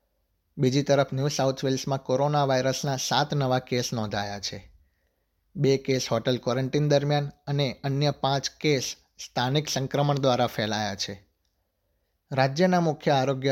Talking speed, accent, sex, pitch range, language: 130 wpm, native, male, 115-140 Hz, Gujarati